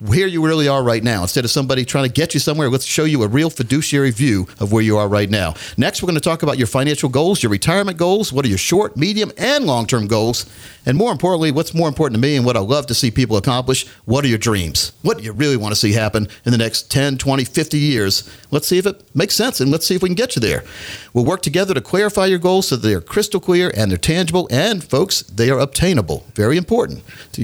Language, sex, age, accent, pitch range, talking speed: English, male, 50-69, American, 115-165 Hz, 260 wpm